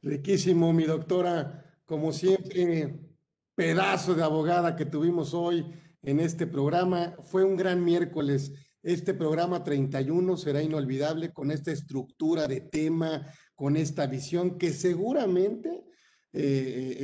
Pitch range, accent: 145-180 Hz, Mexican